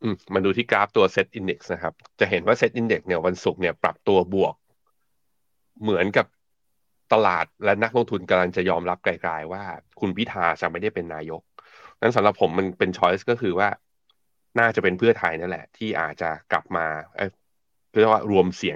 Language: Thai